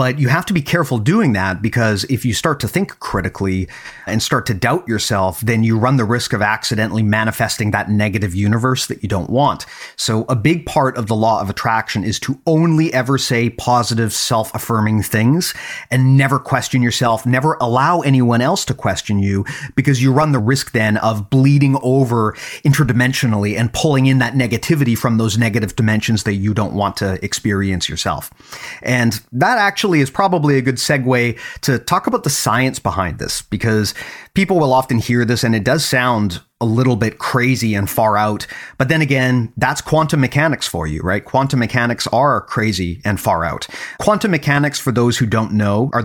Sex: male